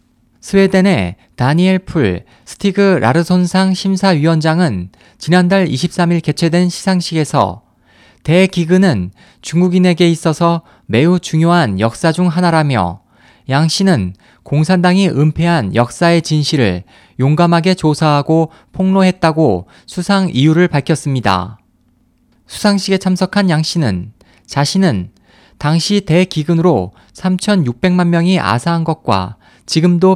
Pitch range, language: 130-180 Hz, Korean